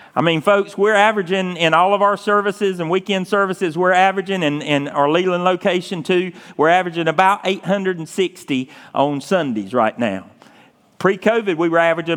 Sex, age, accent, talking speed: male, 40-59, American, 165 wpm